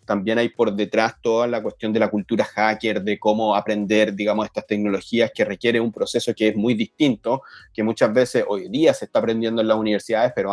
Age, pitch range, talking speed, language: 30-49, 110-130 Hz, 210 wpm, Spanish